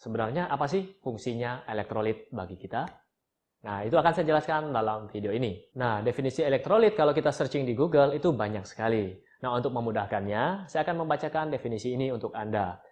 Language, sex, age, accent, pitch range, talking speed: Indonesian, male, 20-39, native, 120-155 Hz, 165 wpm